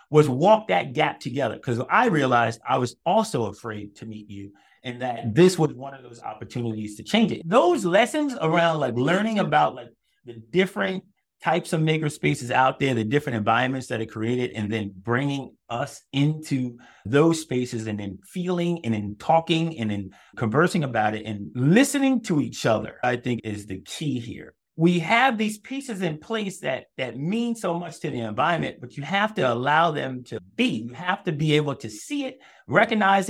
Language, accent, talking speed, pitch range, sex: English, American, 195 wpm, 115-180 Hz, male